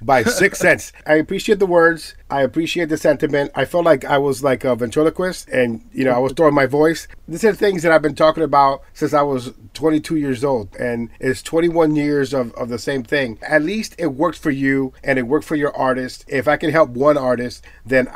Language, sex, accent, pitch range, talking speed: English, male, American, 125-155 Hz, 230 wpm